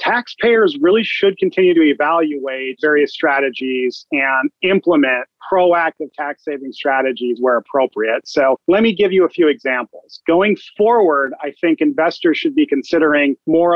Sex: male